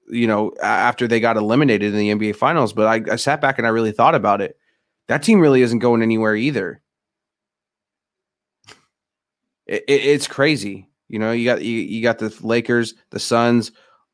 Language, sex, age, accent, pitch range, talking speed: English, male, 20-39, American, 115-145 Hz, 185 wpm